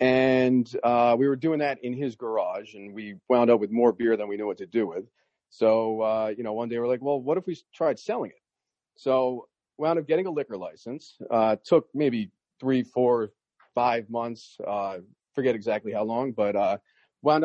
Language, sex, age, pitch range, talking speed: English, male, 40-59, 115-150 Hz, 205 wpm